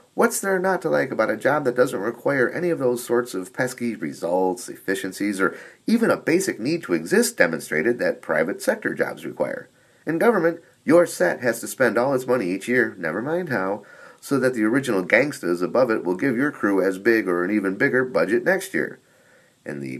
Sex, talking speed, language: male, 205 wpm, English